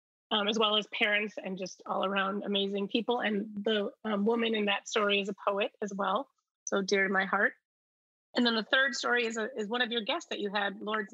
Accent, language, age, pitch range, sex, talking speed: American, English, 30-49, 195-220 Hz, female, 235 wpm